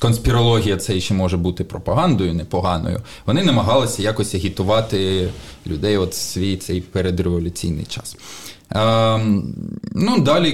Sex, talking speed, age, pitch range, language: male, 125 wpm, 20-39, 100-125 Hz, Ukrainian